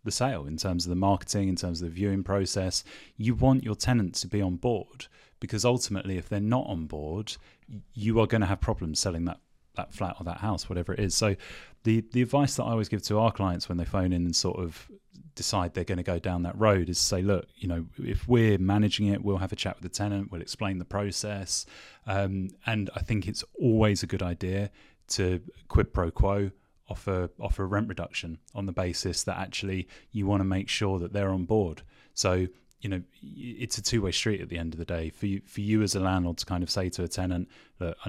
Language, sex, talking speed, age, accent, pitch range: English, male, 235 wpm, 30-49, British, 90-105 Hz